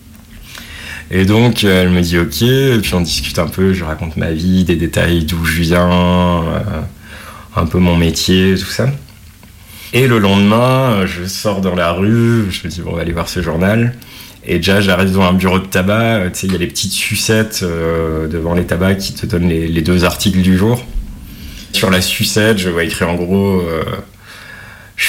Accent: French